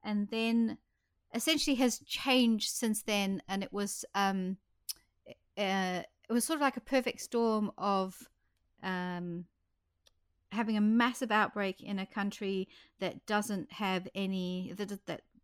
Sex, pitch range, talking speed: female, 175-215 Hz, 135 wpm